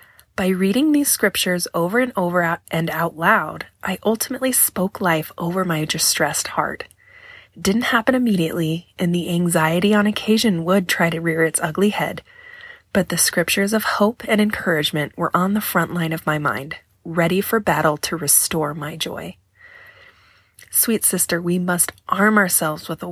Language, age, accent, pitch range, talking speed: English, 20-39, American, 160-205 Hz, 170 wpm